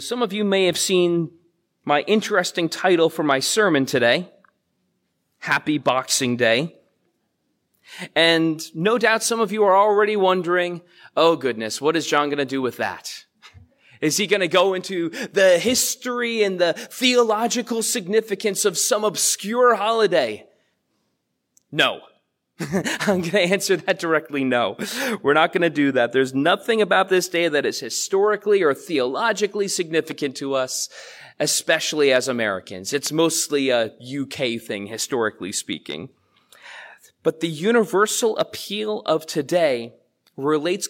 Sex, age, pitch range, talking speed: male, 30-49, 145-210 Hz, 140 wpm